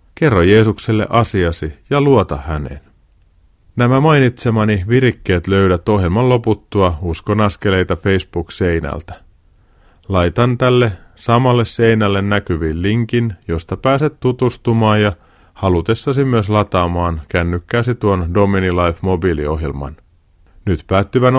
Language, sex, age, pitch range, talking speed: Finnish, male, 30-49, 85-115 Hz, 95 wpm